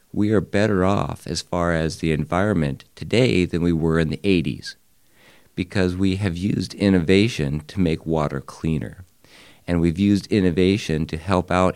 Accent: American